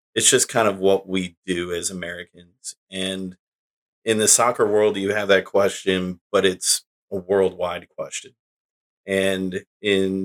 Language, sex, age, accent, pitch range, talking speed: English, male, 30-49, American, 95-105 Hz, 145 wpm